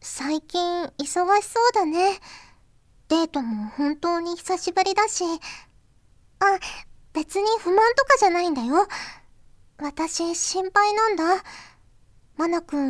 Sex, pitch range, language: male, 260-385 Hz, Japanese